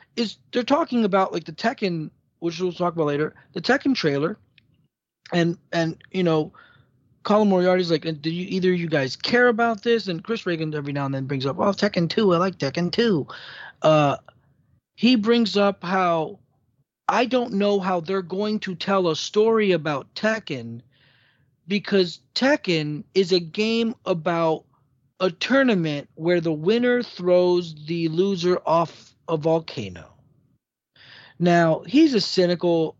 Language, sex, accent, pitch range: English, male, American, 150-195 Hz